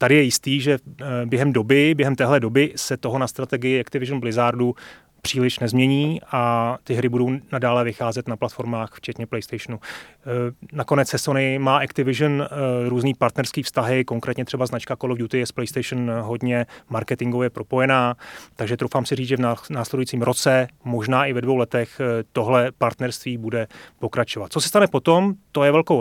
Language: Czech